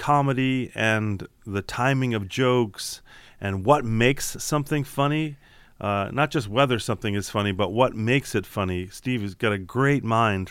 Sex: male